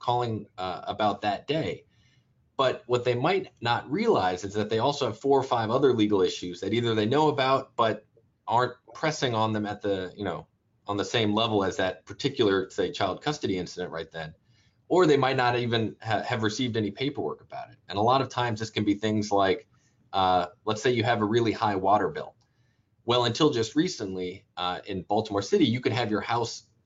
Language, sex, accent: English, male, American